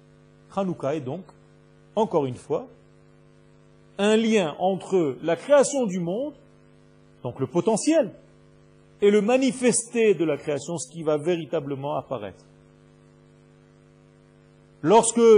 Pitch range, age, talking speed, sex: 140-200 Hz, 40-59, 110 wpm, male